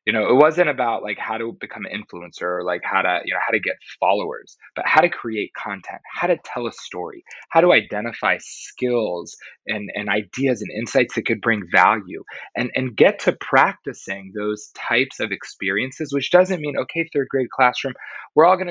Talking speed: 200 wpm